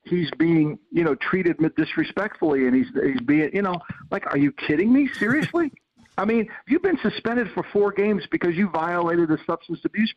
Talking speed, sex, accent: 190 wpm, male, American